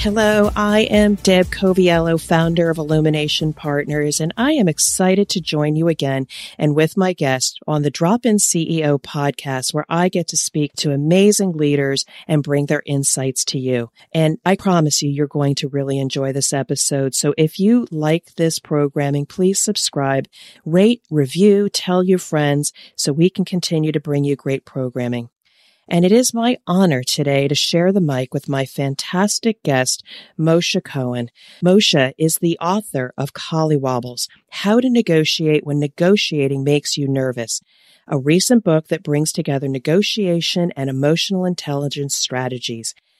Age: 40-59